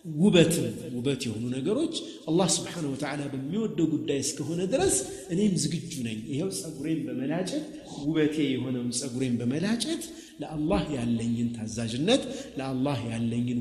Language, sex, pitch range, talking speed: Amharic, male, 110-155 Hz, 115 wpm